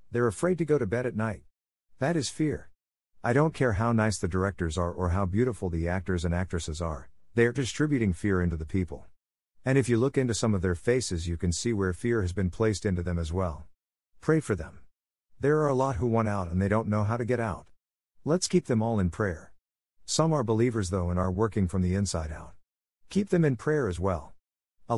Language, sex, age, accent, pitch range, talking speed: English, male, 50-69, American, 85-115 Hz, 235 wpm